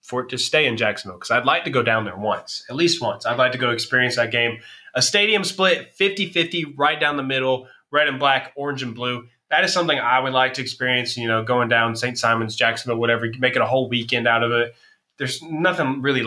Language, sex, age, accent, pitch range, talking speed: English, male, 20-39, American, 125-170 Hz, 240 wpm